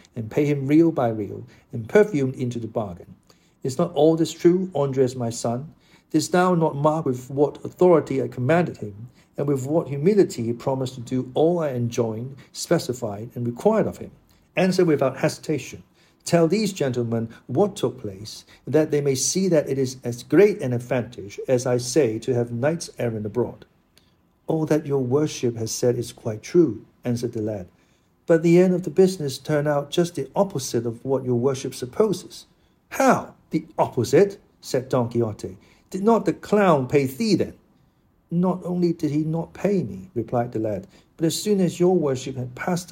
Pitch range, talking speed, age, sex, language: 120-170 Hz, 185 wpm, 50-69, male, English